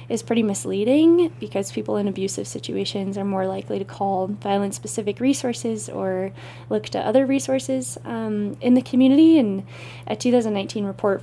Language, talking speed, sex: English, 150 wpm, female